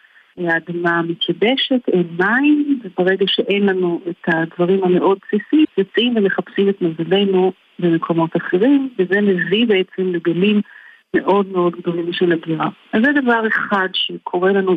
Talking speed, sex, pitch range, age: 130 wpm, female, 175-220 Hz, 40-59